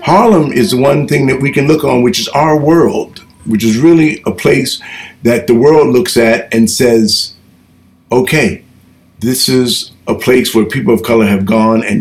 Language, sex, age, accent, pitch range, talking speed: English, male, 50-69, American, 105-130 Hz, 190 wpm